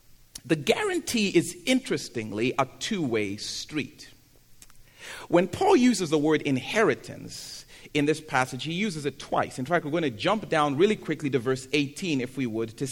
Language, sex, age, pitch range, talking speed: English, male, 40-59, 130-210 Hz, 165 wpm